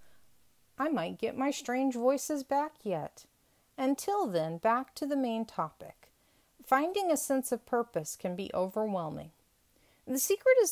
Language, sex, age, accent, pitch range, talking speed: English, female, 40-59, American, 195-290 Hz, 145 wpm